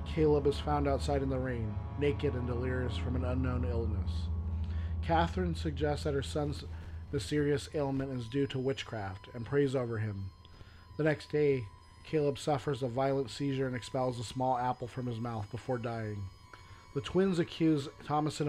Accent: American